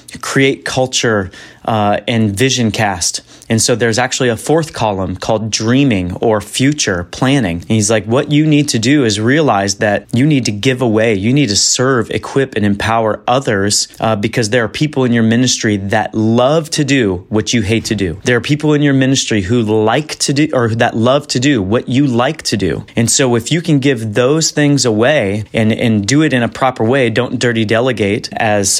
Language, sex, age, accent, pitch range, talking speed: English, male, 30-49, American, 110-135 Hz, 205 wpm